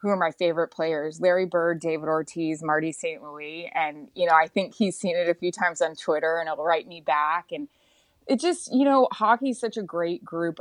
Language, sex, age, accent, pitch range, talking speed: English, female, 20-39, American, 160-200 Hz, 230 wpm